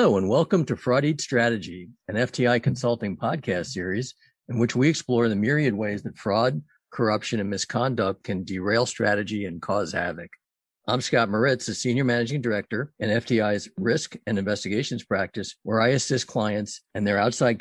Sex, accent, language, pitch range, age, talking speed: male, American, English, 105-125 Hz, 50-69, 170 wpm